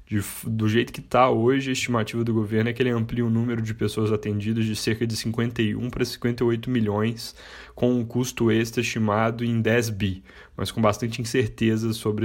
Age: 10-29